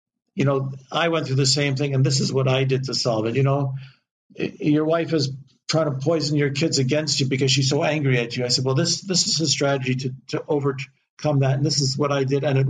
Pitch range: 140-175 Hz